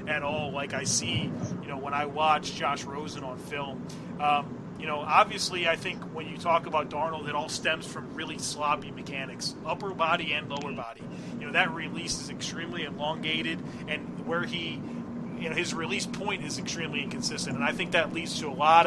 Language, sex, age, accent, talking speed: English, male, 30-49, American, 200 wpm